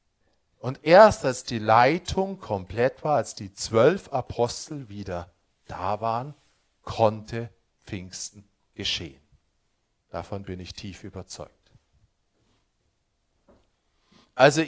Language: German